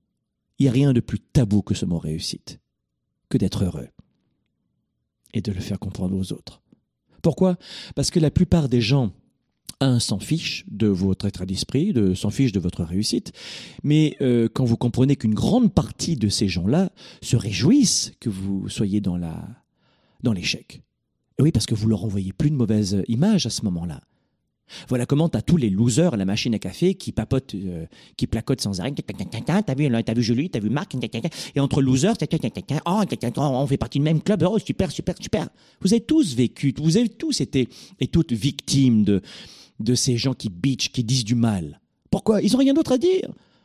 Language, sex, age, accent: French, male, 40-59, French